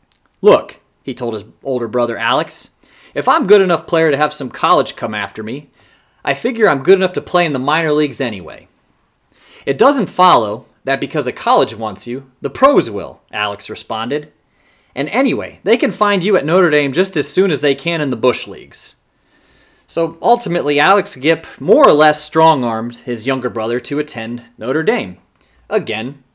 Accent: American